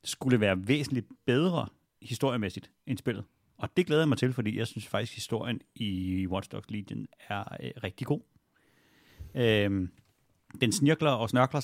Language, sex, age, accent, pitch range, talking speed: Danish, male, 30-49, native, 105-130 Hz, 165 wpm